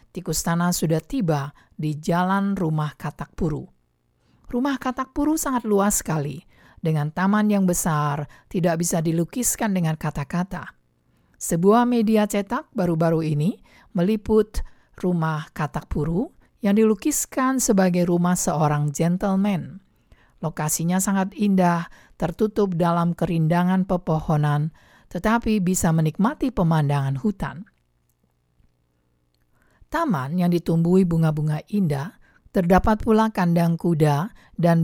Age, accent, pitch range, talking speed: 50-69, native, 150-195 Hz, 105 wpm